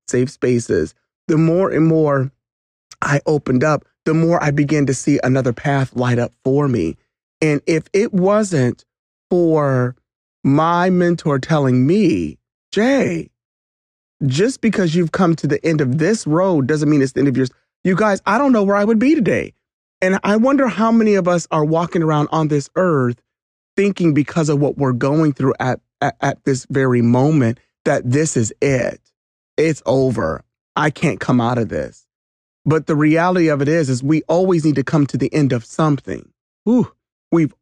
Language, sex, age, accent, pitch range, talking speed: English, male, 30-49, American, 135-175 Hz, 180 wpm